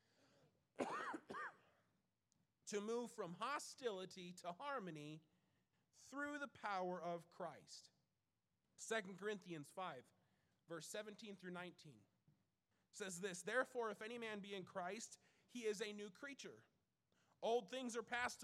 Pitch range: 165-235 Hz